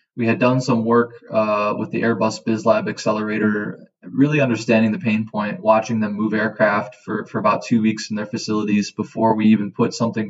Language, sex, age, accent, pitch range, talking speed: English, male, 20-39, American, 105-120 Hz, 190 wpm